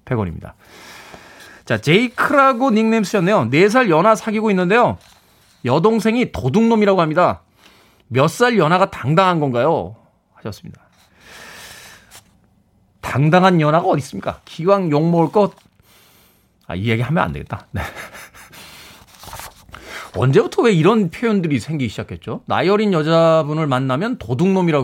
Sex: male